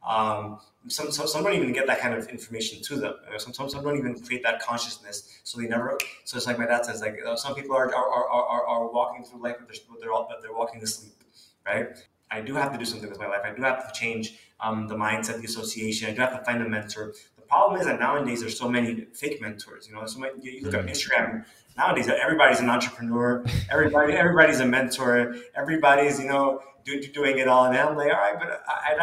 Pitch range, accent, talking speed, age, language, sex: 115-135 Hz, American, 250 wpm, 20-39, English, male